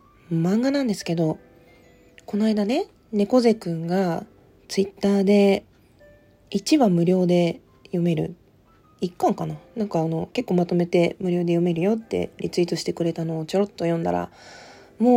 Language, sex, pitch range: Japanese, female, 175-235 Hz